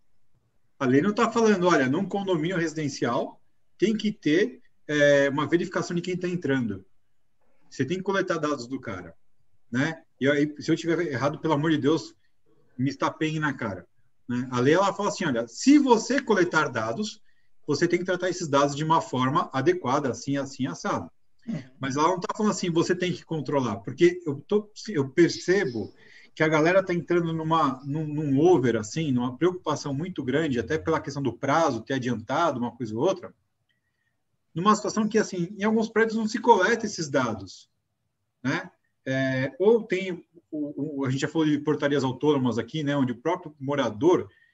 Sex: male